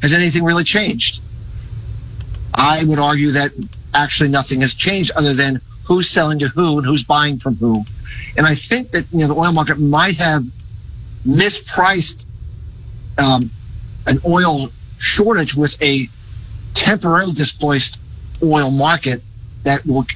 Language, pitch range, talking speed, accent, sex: English, 125-160 Hz, 140 wpm, American, male